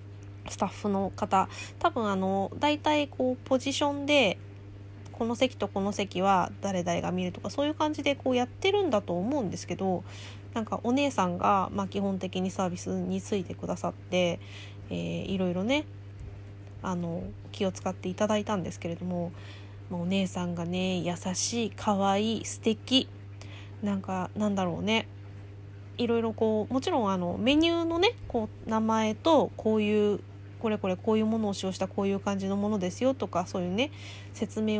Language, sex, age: Japanese, female, 20-39